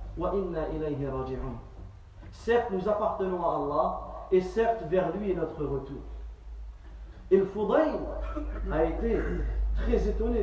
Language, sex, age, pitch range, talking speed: Swahili, male, 40-59, 160-235 Hz, 120 wpm